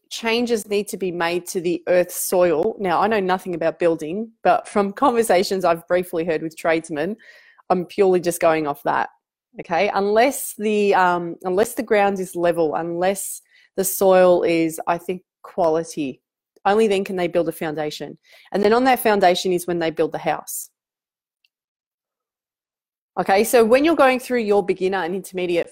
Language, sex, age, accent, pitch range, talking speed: English, female, 30-49, Australian, 170-215 Hz, 165 wpm